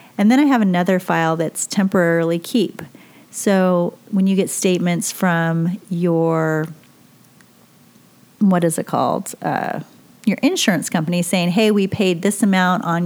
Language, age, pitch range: English, 30-49, 165-200 Hz